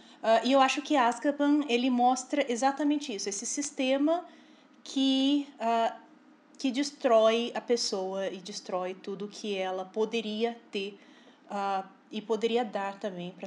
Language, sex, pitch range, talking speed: Portuguese, female, 205-275 Hz, 140 wpm